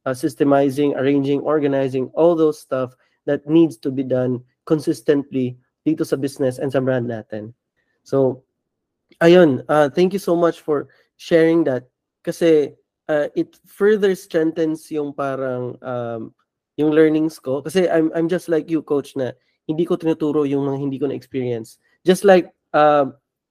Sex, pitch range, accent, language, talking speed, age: male, 135-170 Hz, native, Filipino, 150 wpm, 20-39